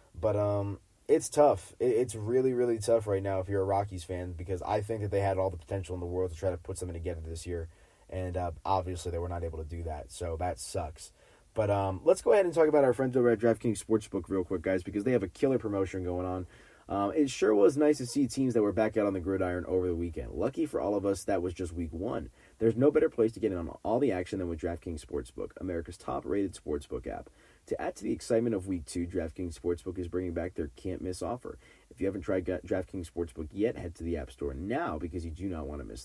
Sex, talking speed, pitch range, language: male, 260 wpm, 90-115 Hz, English